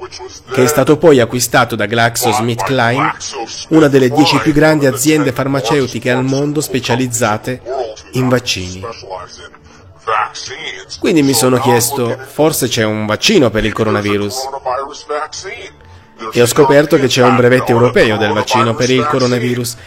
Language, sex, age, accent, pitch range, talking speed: Italian, male, 30-49, native, 120-155 Hz, 130 wpm